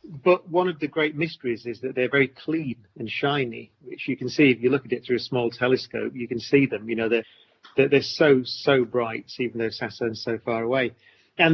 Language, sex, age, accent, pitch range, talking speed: English, male, 40-59, British, 120-150 Hz, 235 wpm